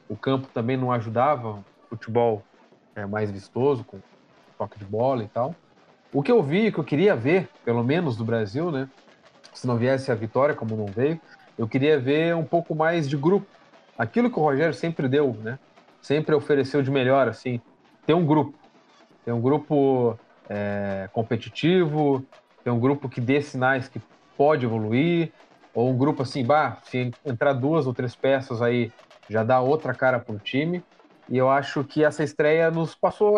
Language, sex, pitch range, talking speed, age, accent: Portuguese, male, 115-150 Hz, 180 wpm, 40-59, Brazilian